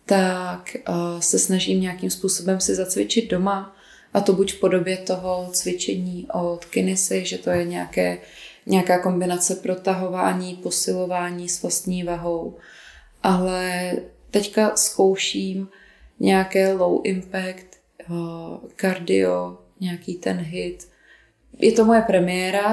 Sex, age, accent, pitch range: female, 20-39, native, 180-230 Hz